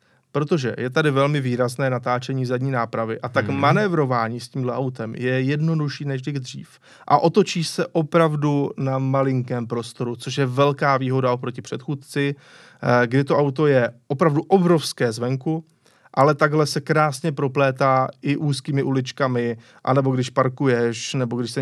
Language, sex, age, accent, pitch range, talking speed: Czech, male, 30-49, native, 125-155 Hz, 145 wpm